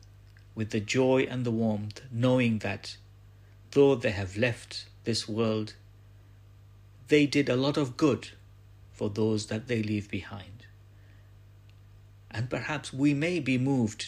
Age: 60-79